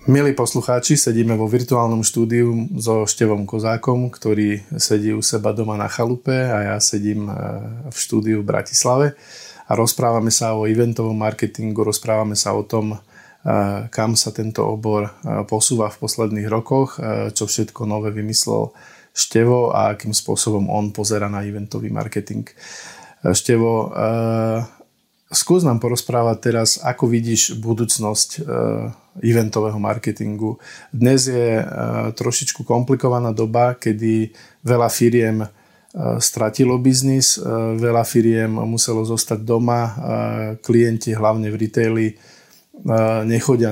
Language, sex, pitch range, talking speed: Slovak, male, 110-120 Hz, 115 wpm